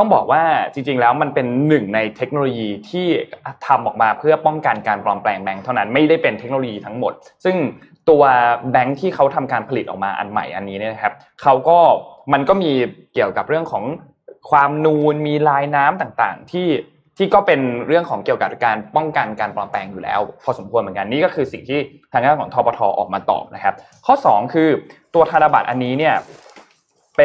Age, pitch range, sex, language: 20-39, 115-150 Hz, male, Thai